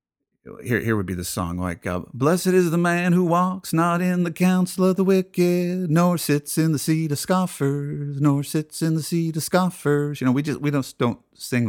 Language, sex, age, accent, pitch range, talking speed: English, male, 50-69, American, 105-150 Hz, 220 wpm